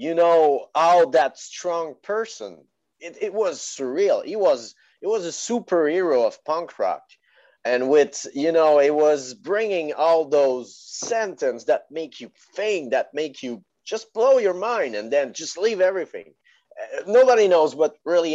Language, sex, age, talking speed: English, male, 30-49, 160 wpm